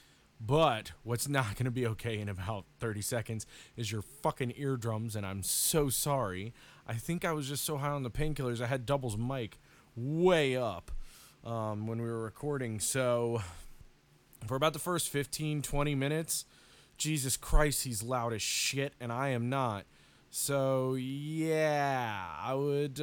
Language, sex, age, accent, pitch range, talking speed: English, male, 20-39, American, 105-140 Hz, 160 wpm